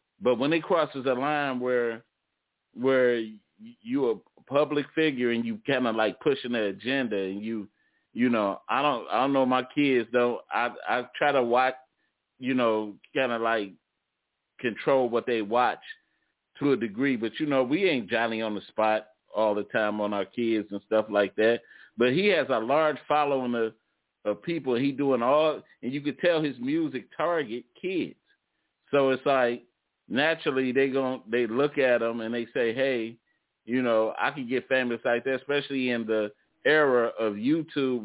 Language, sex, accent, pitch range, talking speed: English, male, American, 115-140 Hz, 180 wpm